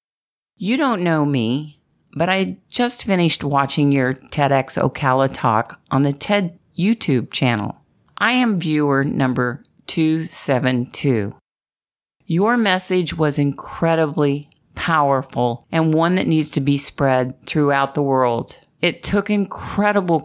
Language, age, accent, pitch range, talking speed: English, 50-69, American, 135-170 Hz, 120 wpm